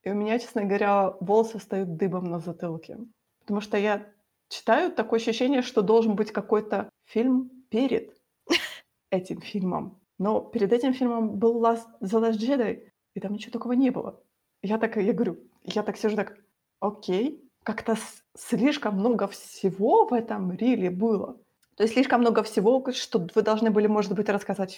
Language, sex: Ukrainian, female